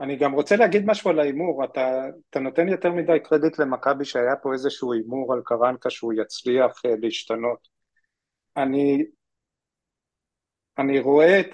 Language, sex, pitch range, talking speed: Hebrew, male, 115-145 Hz, 140 wpm